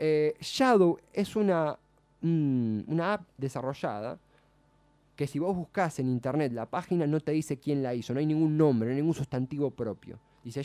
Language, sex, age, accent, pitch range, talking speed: Spanish, male, 20-39, Argentinian, 135-185 Hz, 180 wpm